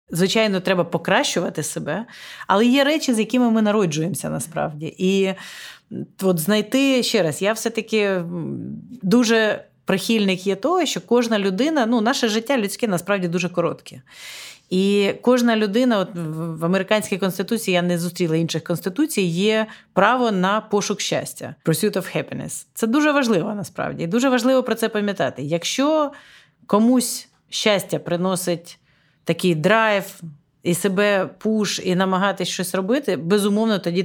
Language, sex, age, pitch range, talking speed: Ukrainian, female, 30-49, 180-230 Hz, 135 wpm